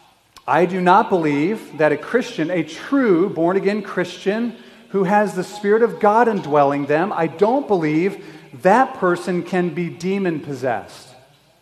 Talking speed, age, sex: 140 wpm, 40-59, male